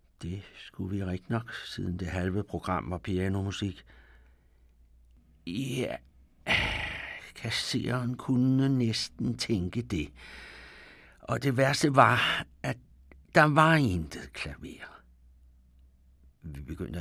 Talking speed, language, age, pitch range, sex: 100 wpm, Danish, 60-79, 75-115 Hz, male